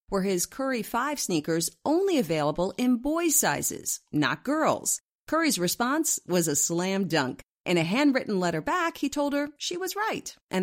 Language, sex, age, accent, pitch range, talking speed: English, female, 40-59, American, 165-260 Hz, 170 wpm